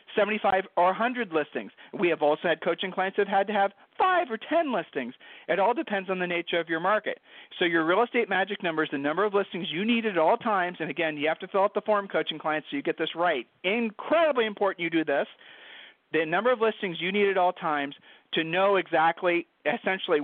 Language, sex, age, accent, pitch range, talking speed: English, male, 40-59, American, 165-215 Hz, 230 wpm